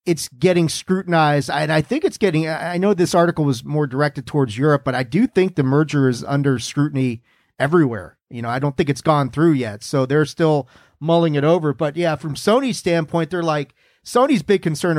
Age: 40-59